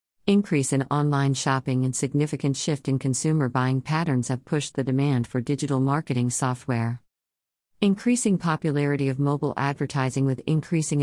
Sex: female